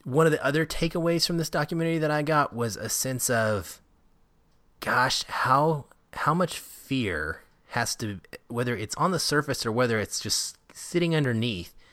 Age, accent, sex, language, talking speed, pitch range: 30-49, American, male, English, 165 wpm, 100-145 Hz